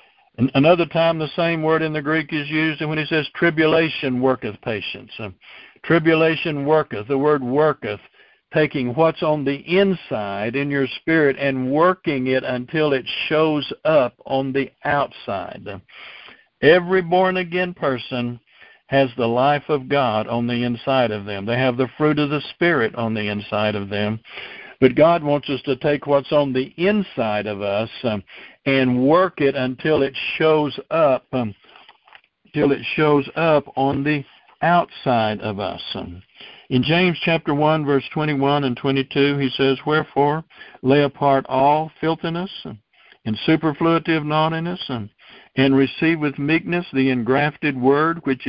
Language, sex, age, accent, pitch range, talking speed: English, male, 60-79, American, 130-160 Hz, 155 wpm